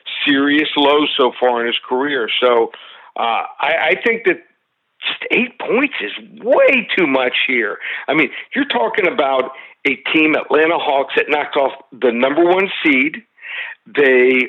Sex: male